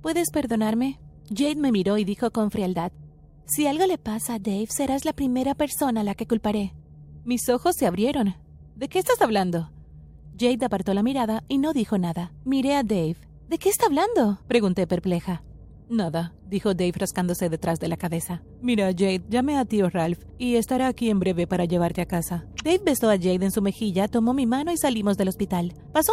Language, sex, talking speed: Spanish, female, 200 wpm